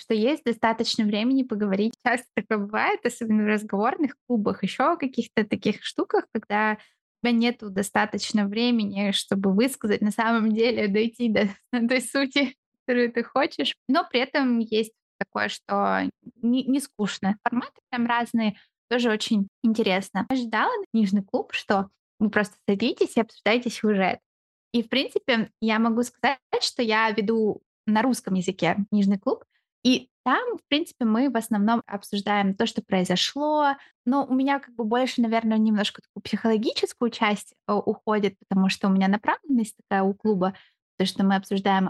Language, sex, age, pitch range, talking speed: Russian, female, 20-39, 210-250 Hz, 160 wpm